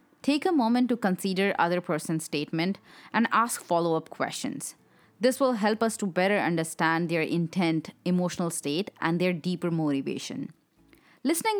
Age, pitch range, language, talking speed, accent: 20-39, 165-215 Hz, English, 145 wpm, Indian